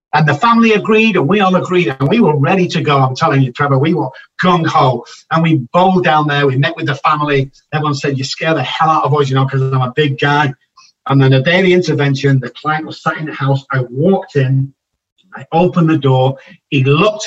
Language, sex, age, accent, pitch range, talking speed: English, male, 50-69, British, 130-160 Hz, 235 wpm